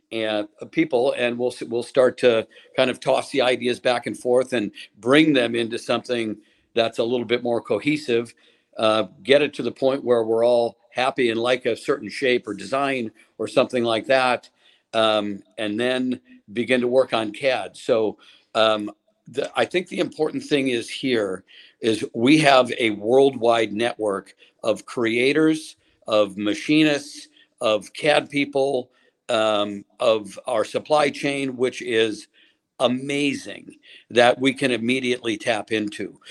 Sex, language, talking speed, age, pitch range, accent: male, English, 155 wpm, 50-69, 110-135 Hz, American